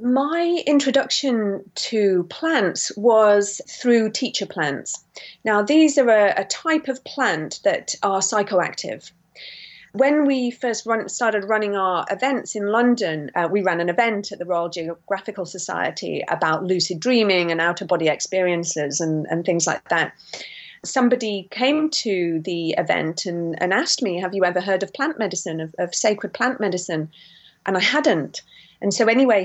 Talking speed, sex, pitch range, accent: 160 wpm, female, 180-230 Hz, British